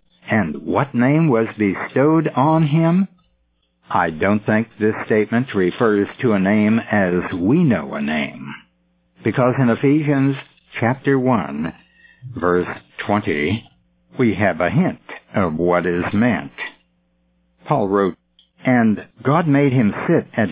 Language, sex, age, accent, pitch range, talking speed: English, male, 60-79, American, 90-135 Hz, 130 wpm